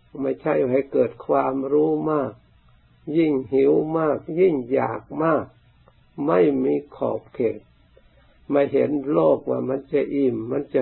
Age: 60-79